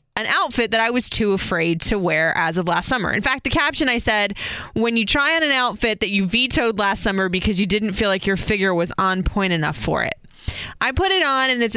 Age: 20-39